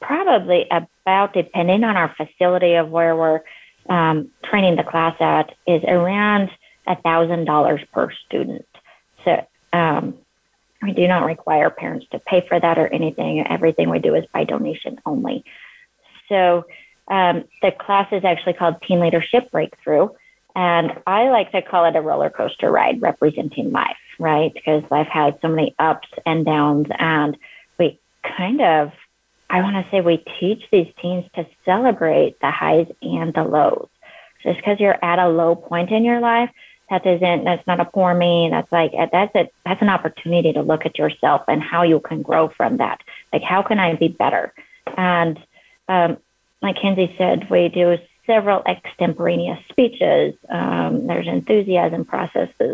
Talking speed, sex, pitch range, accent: 165 wpm, female, 165-195 Hz, American